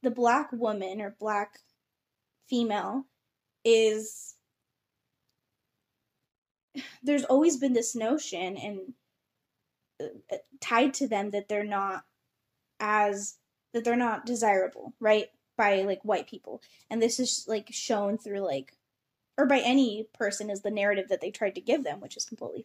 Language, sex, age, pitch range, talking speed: English, female, 10-29, 200-245 Hz, 140 wpm